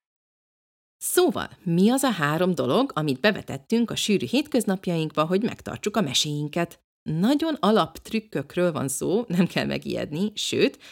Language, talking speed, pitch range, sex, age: Hungarian, 130 wpm, 145-210 Hz, female, 30-49